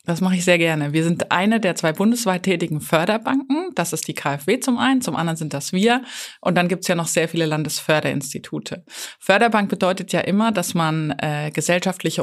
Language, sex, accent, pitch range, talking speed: German, female, German, 160-210 Hz, 200 wpm